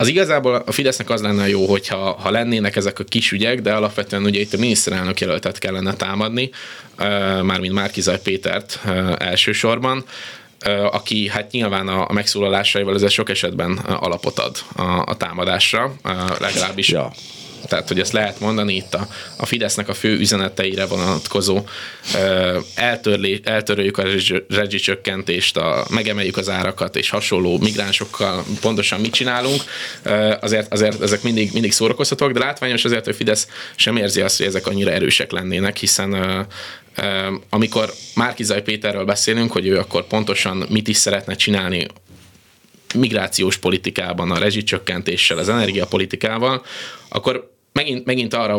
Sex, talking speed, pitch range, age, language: male, 140 wpm, 100-110 Hz, 20-39, Hungarian